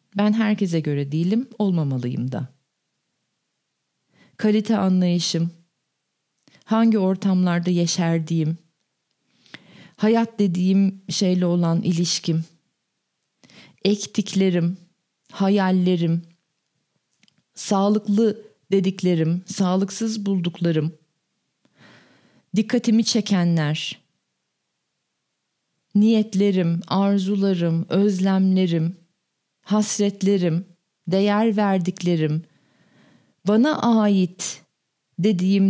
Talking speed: 55 wpm